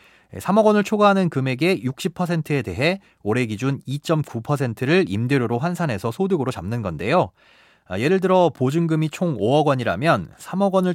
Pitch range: 115-170 Hz